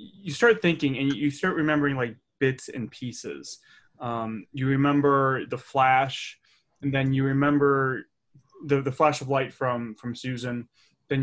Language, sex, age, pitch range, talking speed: English, male, 20-39, 125-150 Hz, 155 wpm